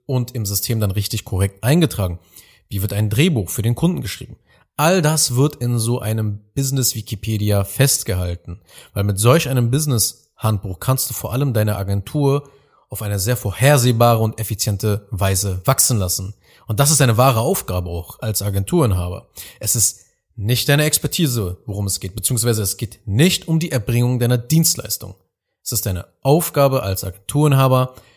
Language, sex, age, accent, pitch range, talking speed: German, male, 30-49, German, 100-130 Hz, 160 wpm